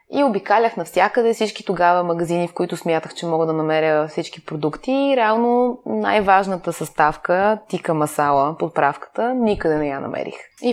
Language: Bulgarian